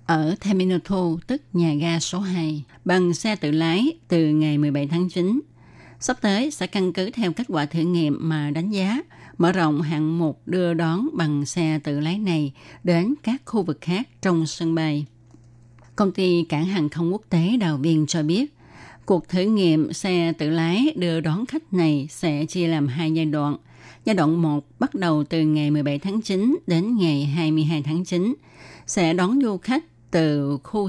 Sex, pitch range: female, 150-185 Hz